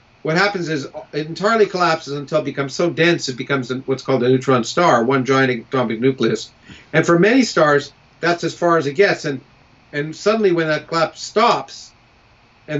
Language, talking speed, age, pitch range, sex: English, 190 wpm, 50-69, 125-155 Hz, male